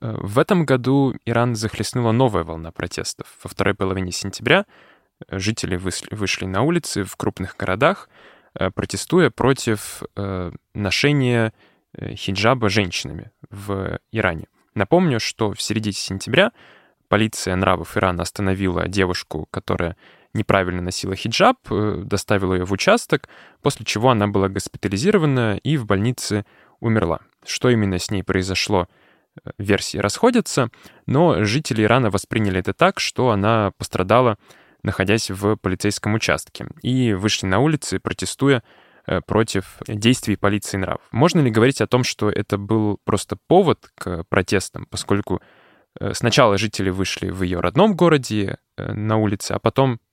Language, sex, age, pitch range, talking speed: Russian, male, 10-29, 95-115 Hz, 125 wpm